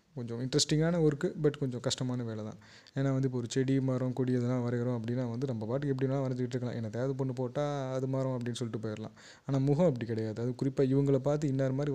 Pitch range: 120-140 Hz